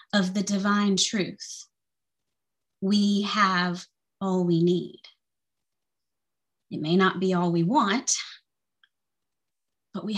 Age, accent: 30-49, American